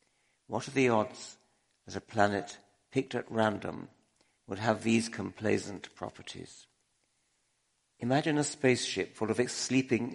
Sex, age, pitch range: male, 60-79, 100-120 Hz